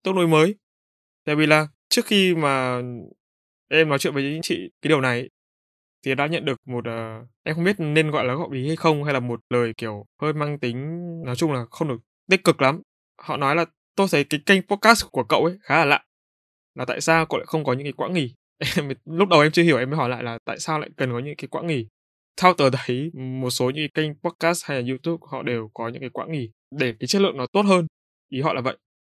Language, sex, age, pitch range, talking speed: Vietnamese, male, 20-39, 125-165 Hz, 255 wpm